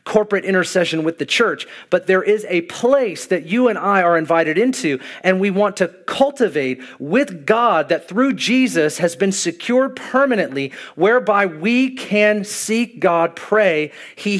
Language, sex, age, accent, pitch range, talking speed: English, male, 40-59, American, 165-210 Hz, 160 wpm